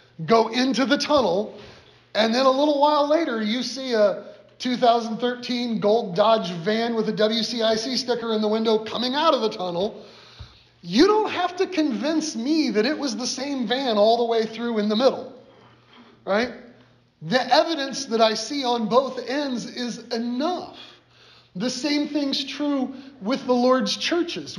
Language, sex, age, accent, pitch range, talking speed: English, male, 30-49, American, 205-280 Hz, 165 wpm